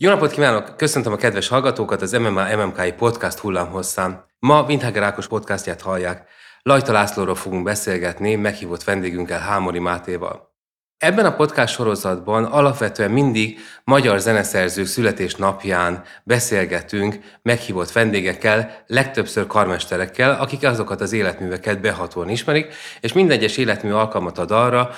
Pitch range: 95-125 Hz